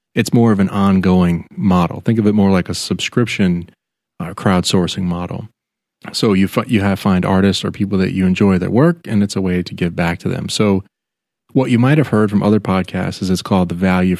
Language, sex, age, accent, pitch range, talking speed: English, male, 30-49, American, 90-110 Hz, 225 wpm